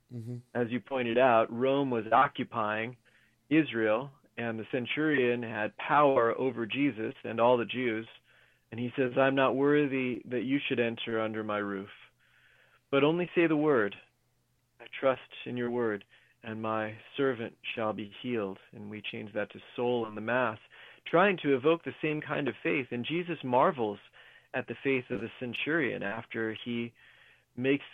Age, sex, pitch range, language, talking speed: 30-49, male, 115-135 Hz, English, 165 wpm